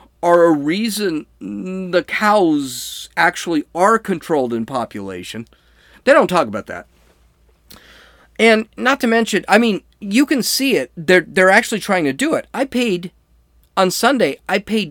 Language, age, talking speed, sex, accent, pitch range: English, 40-59, 155 wpm, male, American, 120-180 Hz